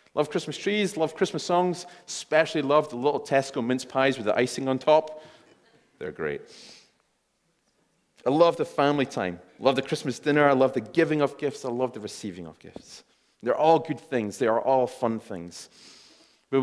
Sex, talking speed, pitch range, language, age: male, 190 wpm, 110-150 Hz, English, 30-49